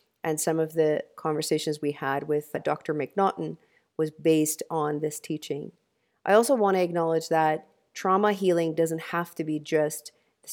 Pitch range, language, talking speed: 155-190 Hz, English, 165 wpm